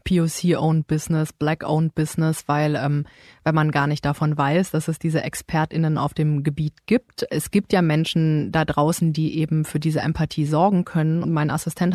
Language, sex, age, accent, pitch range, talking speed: German, female, 30-49, German, 155-185 Hz, 175 wpm